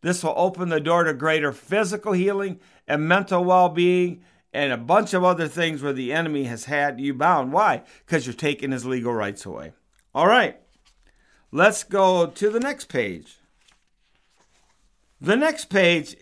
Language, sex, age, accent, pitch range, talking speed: English, male, 50-69, American, 140-180 Hz, 165 wpm